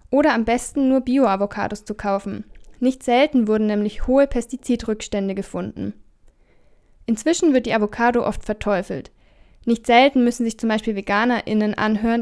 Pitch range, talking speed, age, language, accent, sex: 210-250 Hz, 135 wpm, 10-29, German, German, female